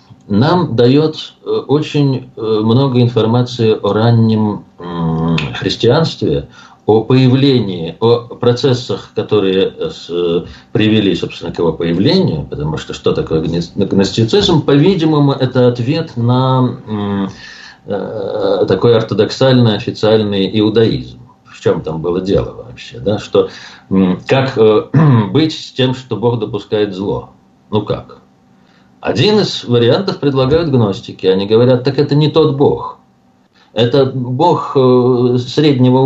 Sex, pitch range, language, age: male, 105-140 Hz, Russian, 50-69